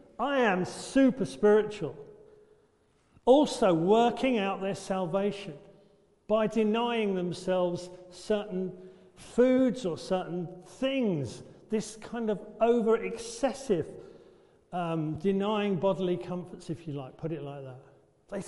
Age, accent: 50-69, British